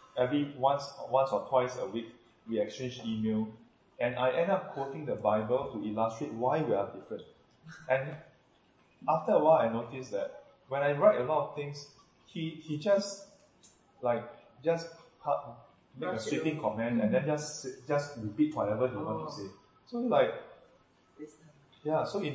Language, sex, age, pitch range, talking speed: English, male, 20-39, 115-150 Hz, 165 wpm